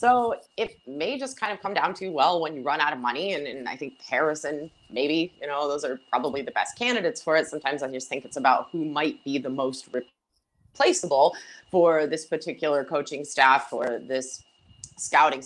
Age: 30-49